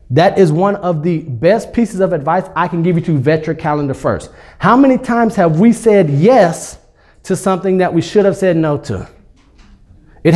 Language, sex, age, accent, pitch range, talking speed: English, male, 30-49, American, 145-200 Hz, 205 wpm